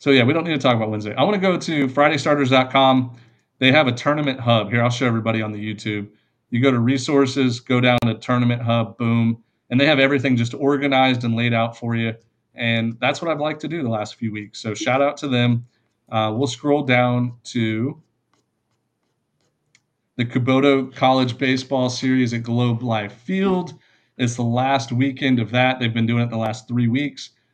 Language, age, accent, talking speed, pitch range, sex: English, 40-59, American, 200 wpm, 115-145 Hz, male